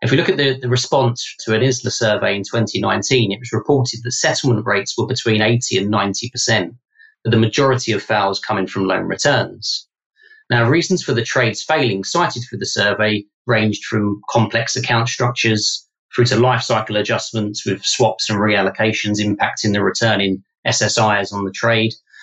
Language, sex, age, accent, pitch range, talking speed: English, male, 30-49, British, 110-130 Hz, 175 wpm